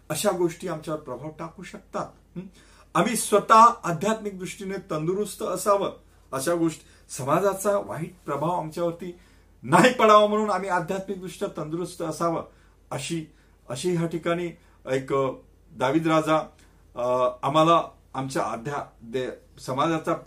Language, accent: Marathi, native